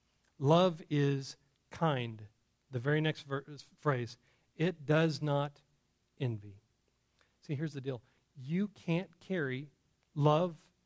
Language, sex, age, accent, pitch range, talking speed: English, male, 40-59, American, 140-200 Hz, 110 wpm